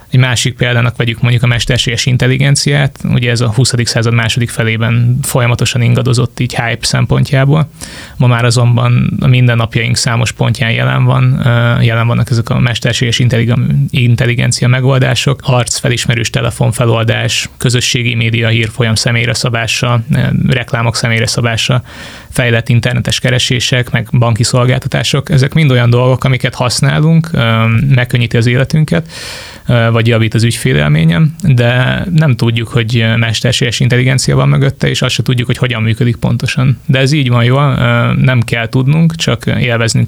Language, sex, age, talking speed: Hungarian, male, 20-39, 135 wpm